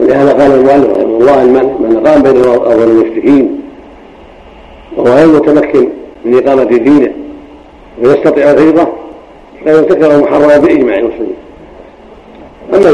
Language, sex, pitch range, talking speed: Arabic, male, 130-180 Hz, 110 wpm